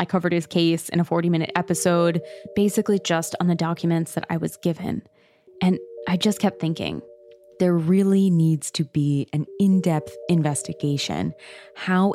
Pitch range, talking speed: 155-190 Hz, 155 wpm